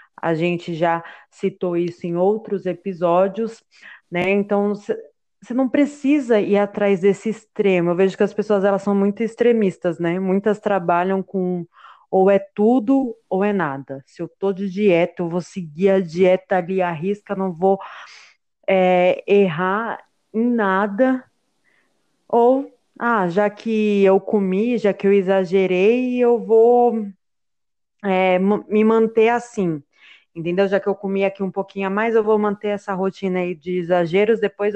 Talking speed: 155 wpm